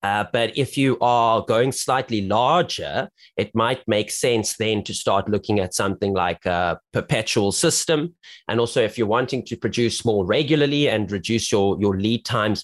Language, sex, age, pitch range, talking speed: English, male, 30-49, 105-130 Hz, 175 wpm